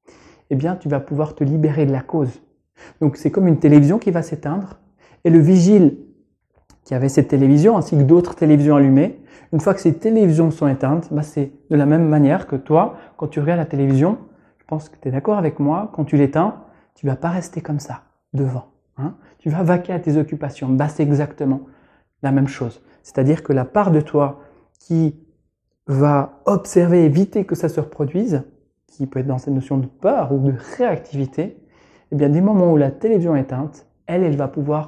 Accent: French